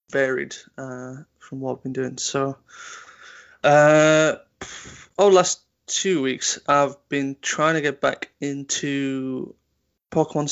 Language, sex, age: English, male, 20-39